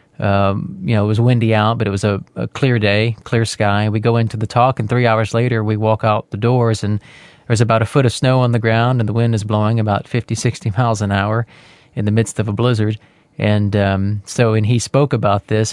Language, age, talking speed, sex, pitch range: English, 30-49, 250 wpm, male, 105-120 Hz